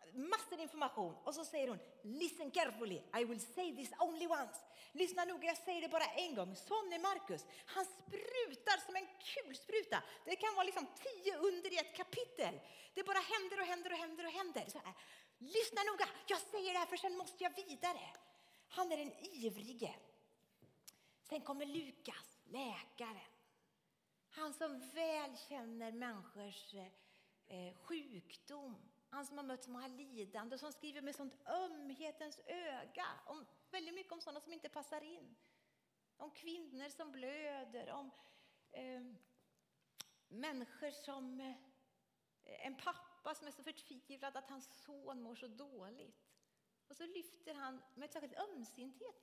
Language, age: Swedish, 40-59